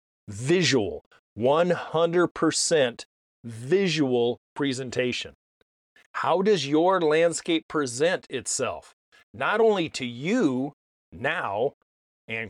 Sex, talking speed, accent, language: male, 75 wpm, American, English